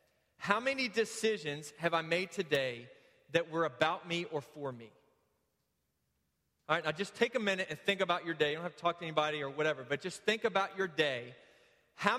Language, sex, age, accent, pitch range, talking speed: English, male, 30-49, American, 150-185 Hz, 205 wpm